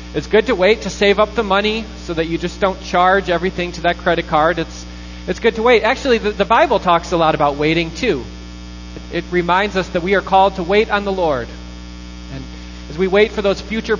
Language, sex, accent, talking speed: English, male, American, 235 wpm